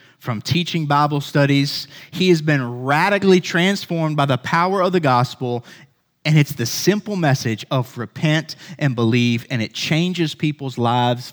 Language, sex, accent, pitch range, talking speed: English, male, American, 130-195 Hz, 155 wpm